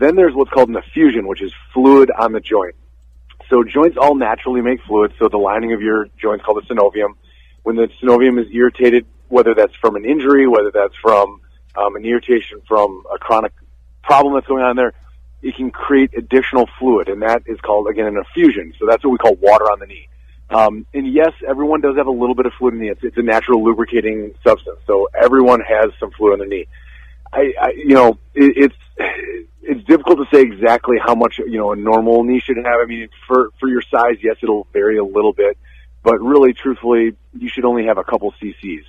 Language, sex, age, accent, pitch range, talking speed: English, male, 40-59, American, 105-135 Hz, 220 wpm